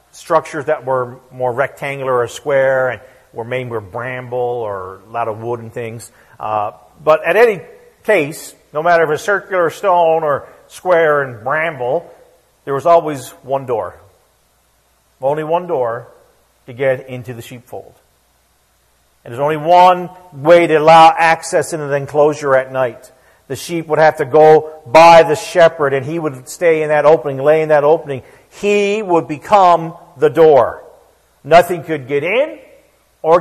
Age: 50-69